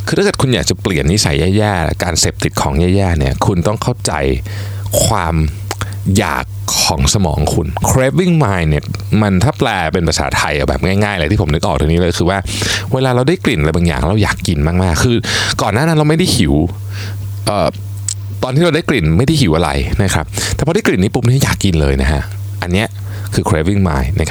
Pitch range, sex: 85-105 Hz, male